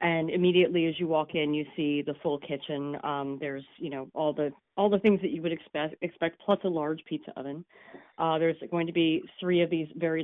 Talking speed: 230 wpm